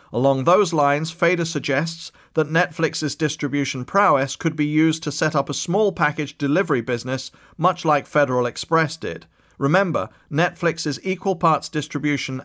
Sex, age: male, 40-59